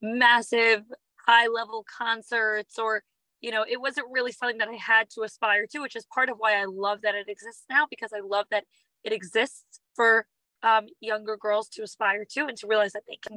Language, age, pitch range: English, 20-39, 215-260 Hz